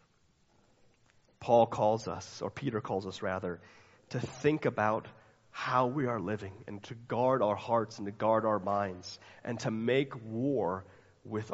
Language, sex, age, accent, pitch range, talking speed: English, male, 30-49, American, 105-140 Hz, 155 wpm